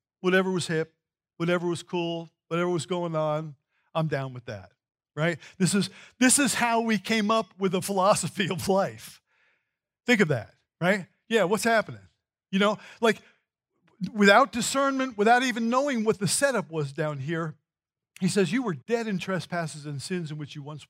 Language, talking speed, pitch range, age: English, 180 wpm, 155-205 Hz, 50-69